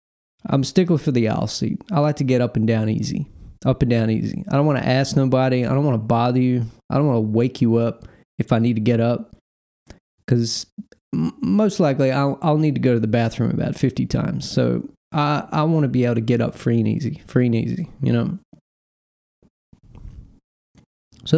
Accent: American